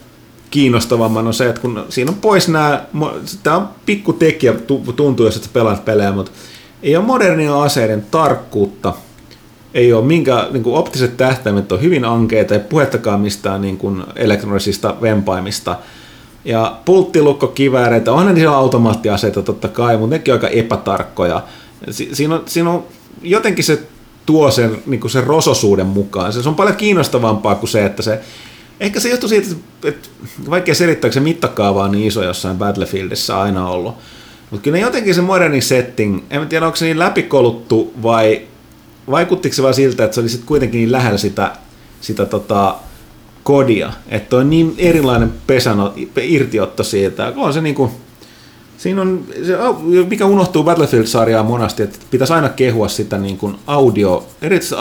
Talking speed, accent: 155 wpm, native